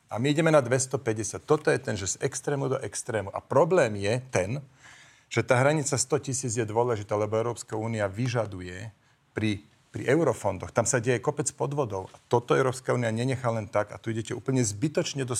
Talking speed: 190 wpm